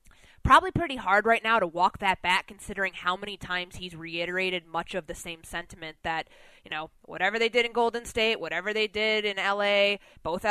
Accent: American